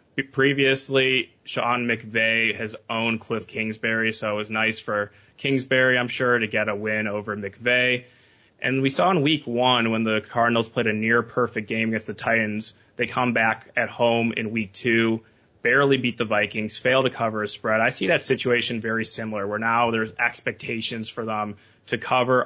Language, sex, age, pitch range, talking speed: English, male, 20-39, 110-120 Hz, 180 wpm